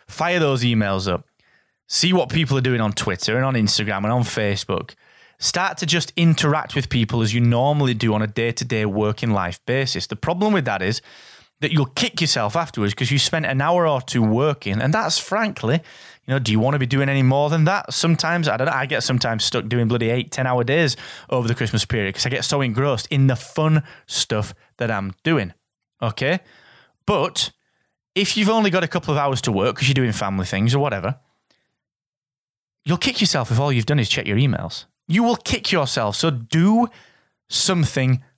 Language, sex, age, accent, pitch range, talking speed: English, male, 20-39, British, 110-155 Hz, 210 wpm